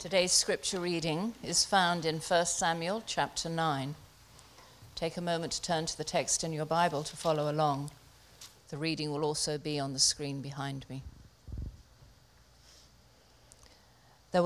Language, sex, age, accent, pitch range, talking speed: English, female, 50-69, British, 140-170 Hz, 145 wpm